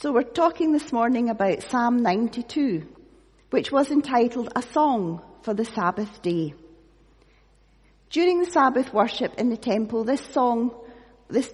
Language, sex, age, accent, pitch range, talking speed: English, female, 40-59, British, 210-305 Hz, 140 wpm